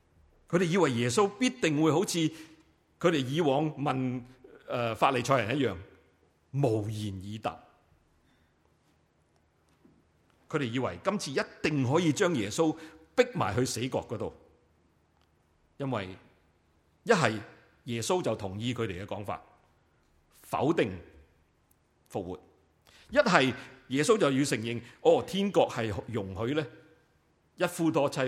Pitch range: 85-130 Hz